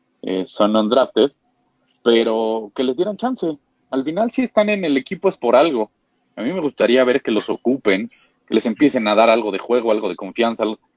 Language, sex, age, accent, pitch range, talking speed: Spanish, male, 30-49, Mexican, 100-125 Hz, 200 wpm